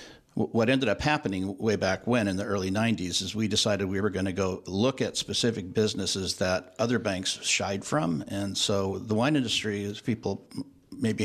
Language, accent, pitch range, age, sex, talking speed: English, American, 100-115 Hz, 60-79, male, 190 wpm